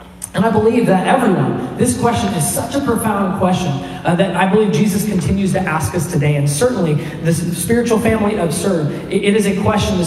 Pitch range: 160-215 Hz